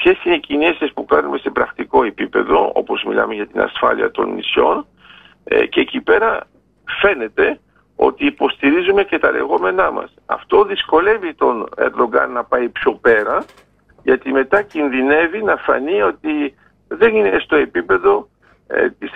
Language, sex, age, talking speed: Greek, male, 50-69, 140 wpm